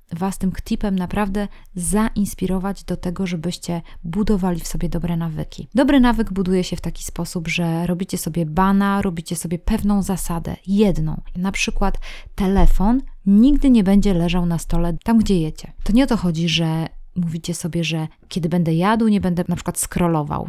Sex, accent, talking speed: female, native, 170 wpm